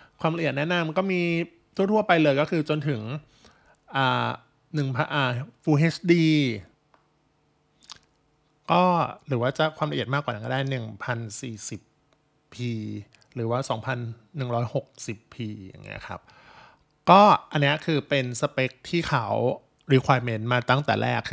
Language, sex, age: Thai, male, 20-39